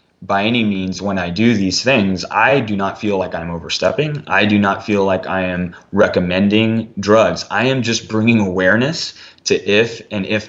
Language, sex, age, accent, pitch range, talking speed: English, male, 20-39, American, 95-105 Hz, 190 wpm